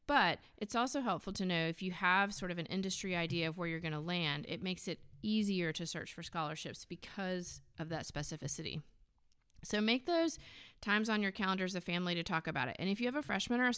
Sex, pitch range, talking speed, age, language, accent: female, 170-210 Hz, 230 wpm, 30-49, English, American